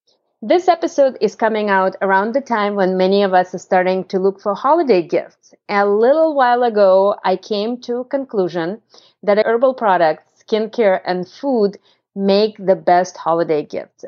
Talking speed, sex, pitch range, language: 165 wpm, female, 185-235 Hz, English